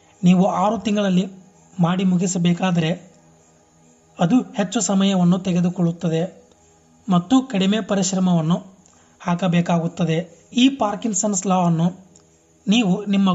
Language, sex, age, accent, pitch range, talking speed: Kannada, male, 30-49, native, 155-195 Hz, 80 wpm